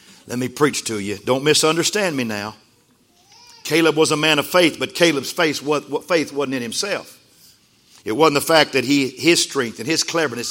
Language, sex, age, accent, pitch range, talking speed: English, male, 50-69, American, 135-170 Hz, 185 wpm